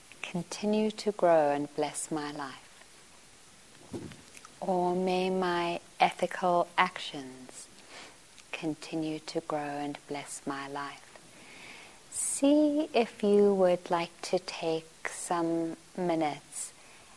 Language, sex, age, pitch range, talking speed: English, female, 50-69, 160-200 Hz, 100 wpm